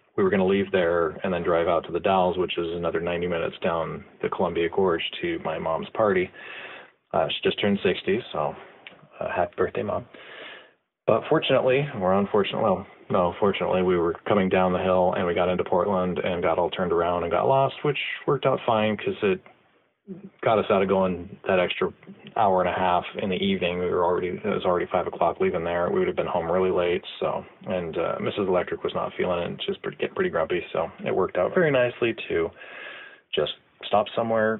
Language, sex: English, male